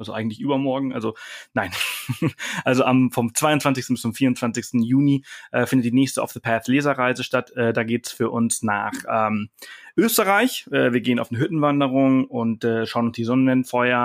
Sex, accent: male, German